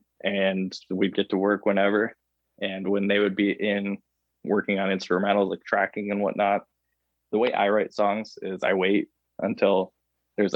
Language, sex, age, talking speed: English, male, 20-39, 165 wpm